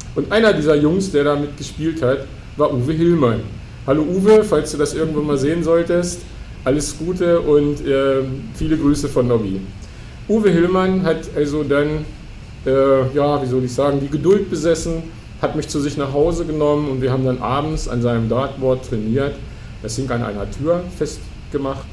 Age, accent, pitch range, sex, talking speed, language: 50-69, German, 120-150 Hz, male, 175 wpm, German